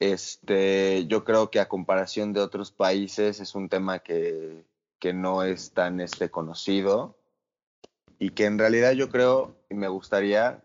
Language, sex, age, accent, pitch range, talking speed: Spanish, male, 20-39, Mexican, 90-110 Hz, 160 wpm